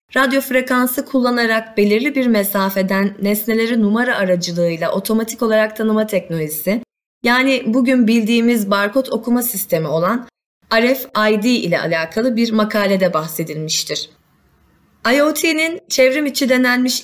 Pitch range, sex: 185-240 Hz, female